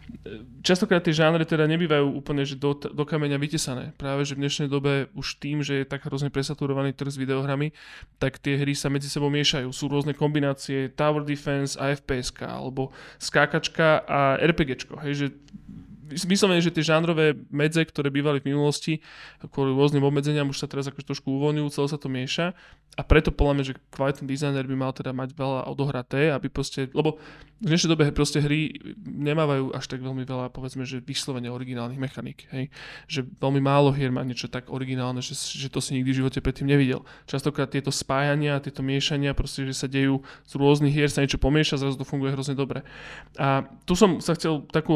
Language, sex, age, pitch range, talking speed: Slovak, male, 20-39, 135-150 Hz, 185 wpm